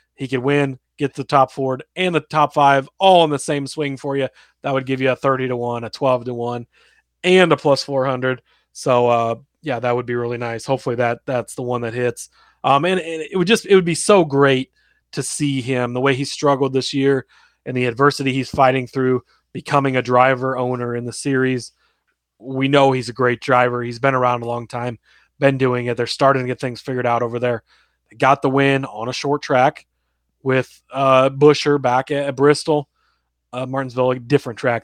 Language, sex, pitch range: English, male, 125-150 Hz